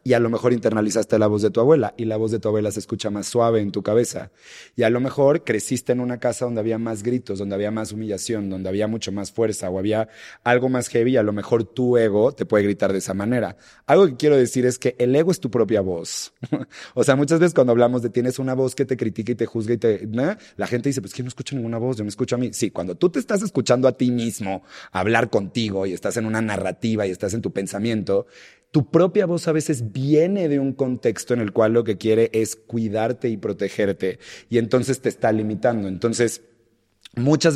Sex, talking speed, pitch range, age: male, 245 wpm, 105-125 Hz, 30-49